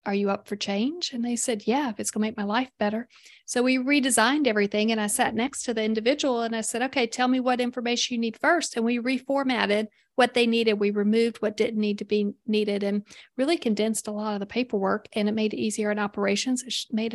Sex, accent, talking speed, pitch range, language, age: female, American, 245 wpm, 205-235 Hz, English, 40-59